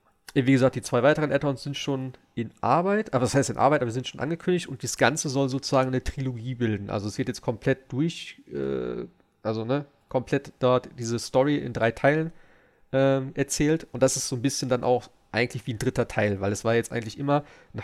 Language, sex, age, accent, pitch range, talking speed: German, male, 40-59, German, 115-140 Hz, 220 wpm